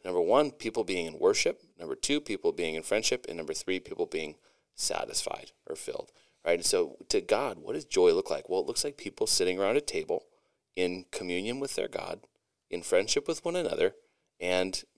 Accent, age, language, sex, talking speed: American, 30-49, English, male, 200 wpm